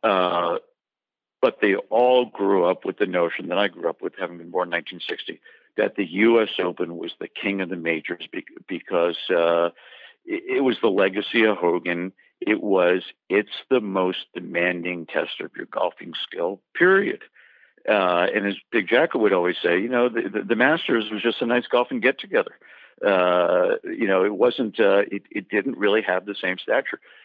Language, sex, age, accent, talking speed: English, male, 50-69, American, 185 wpm